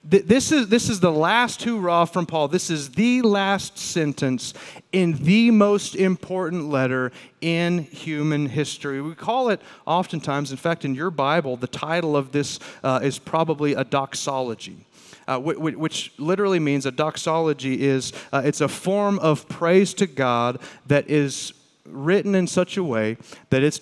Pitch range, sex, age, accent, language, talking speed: 130-165 Hz, male, 40-59, American, English, 160 wpm